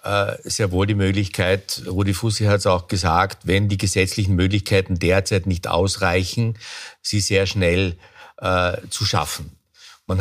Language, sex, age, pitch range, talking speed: German, male, 50-69, 95-110 Hz, 140 wpm